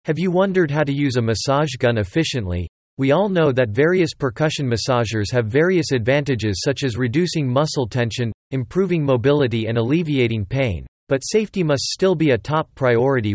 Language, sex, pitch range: English, male, 120-155 Hz